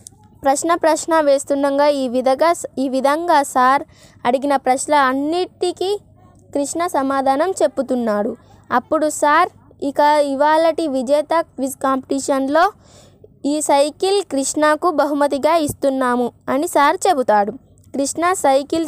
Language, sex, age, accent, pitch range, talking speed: Telugu, female, 20-39, native, 265-320 Hz, 100 wpm